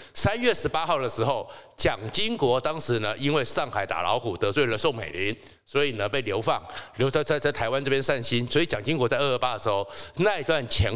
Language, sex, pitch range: Chinese, male, 125-165 Hz